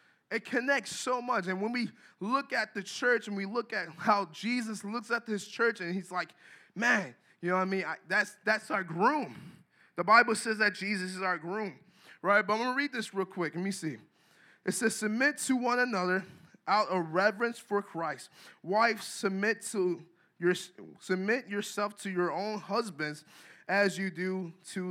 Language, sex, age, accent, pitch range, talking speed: English, male, 20-39, American, 190-245 Hz, 185 wpm